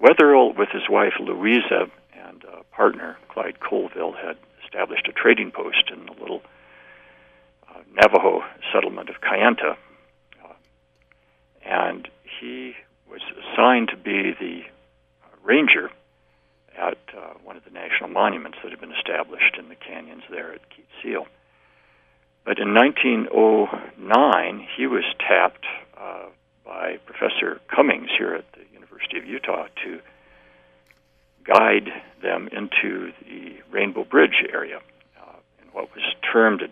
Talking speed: 130 wpm